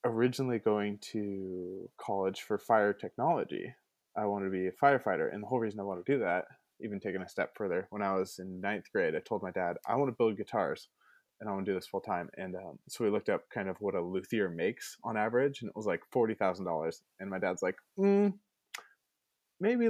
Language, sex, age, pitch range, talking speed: English, male, 20-39, 100-160 Hz, 225 wpm